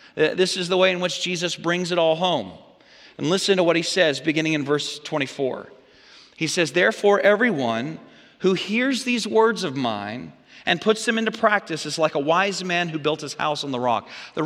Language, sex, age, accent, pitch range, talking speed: English, male, 40-59, American, 145-200 Hz, 205 wpm